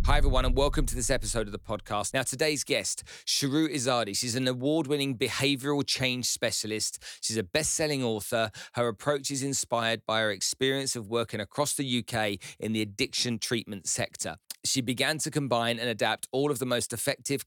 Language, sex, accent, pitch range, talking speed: English, male, British, 115-140 Hz, 180 wpm